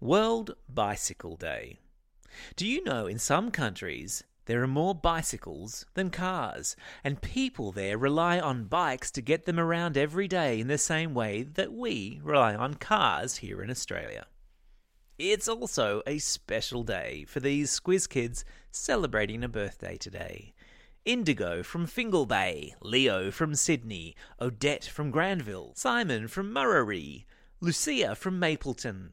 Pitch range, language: 115-180 Hz, English